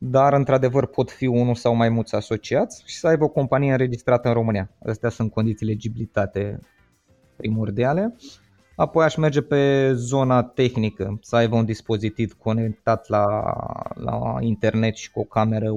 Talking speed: 150 wpm